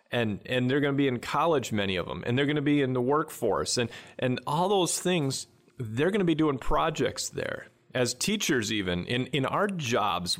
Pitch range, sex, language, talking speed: 120-150 Hz, male, English, 220 wpm